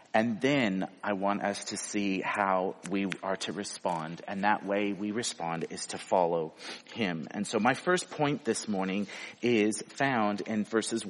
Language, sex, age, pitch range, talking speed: English, male, 40-59, 105-150 Hz, 175 wpm